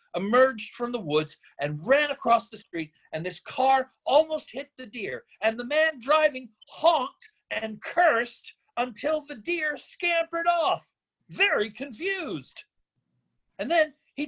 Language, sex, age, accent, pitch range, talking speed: English, male, 50-69, American, 215-315 Hz, 140 wpm